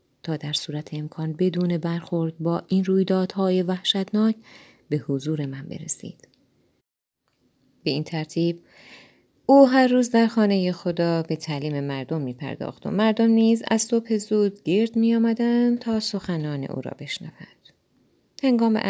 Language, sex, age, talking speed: Persian, female, 30-49, 135 wpm